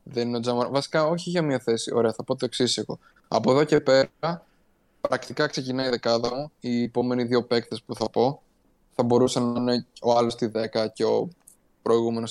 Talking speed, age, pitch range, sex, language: 180 wpm, 20-39, 115-135 Hz, male, Greek